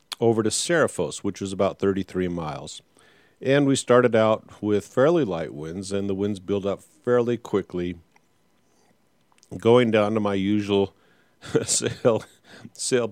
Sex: male